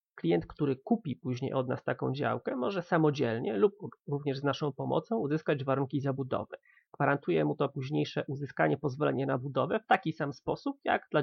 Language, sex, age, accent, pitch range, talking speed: Polish, male, 30-49, native, 135-155 Hz, 170 wpm